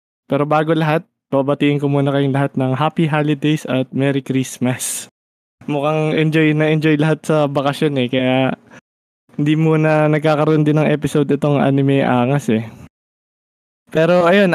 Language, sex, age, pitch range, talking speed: Filipino, male, 20-39, 130-155 Hz, 140 wpm